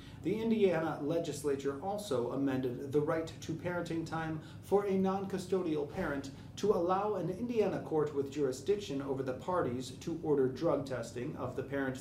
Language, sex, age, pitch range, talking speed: English, male, 30-49, 130-175 Hz, 155 wpm